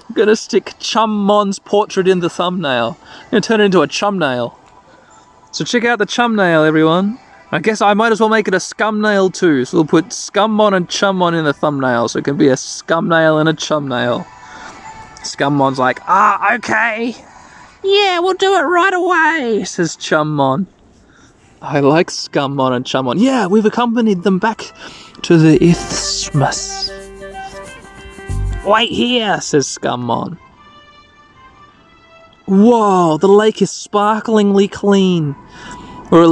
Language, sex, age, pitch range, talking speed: English, male, 20-39, 155-230 Hz, 145 wpm